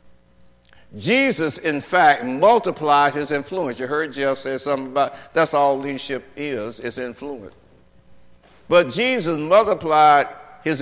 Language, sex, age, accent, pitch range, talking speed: English, male, 60-79, American, 120-165 Hz, 120 wpm